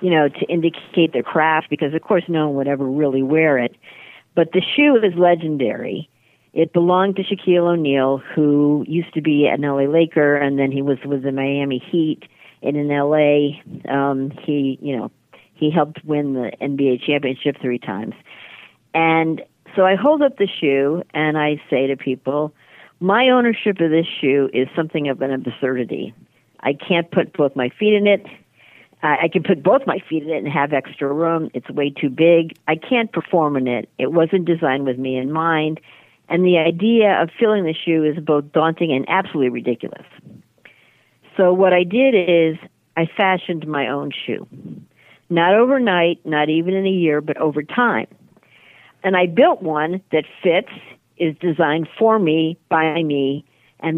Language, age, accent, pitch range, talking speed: English, 50-69, American, 140-175 Hz, 180 wpm